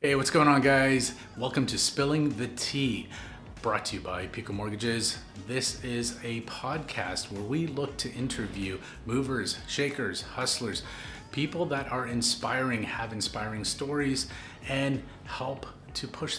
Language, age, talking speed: English, 30-49, 145 wpm